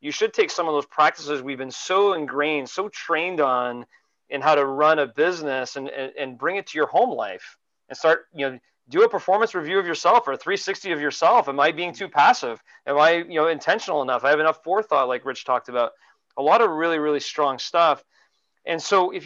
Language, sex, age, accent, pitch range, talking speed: English, male, 30-49, American, 140-165 Hz, 225 wpm